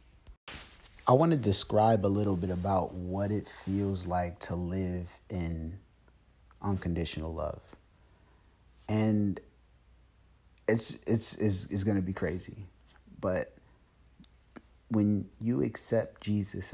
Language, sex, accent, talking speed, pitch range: English, male, American, 110 wpm, 85-120 Hz